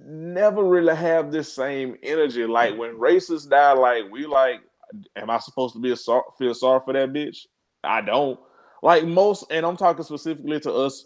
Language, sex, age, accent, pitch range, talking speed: English, male, 20-39, American, 135-180 Hz, 190 wpm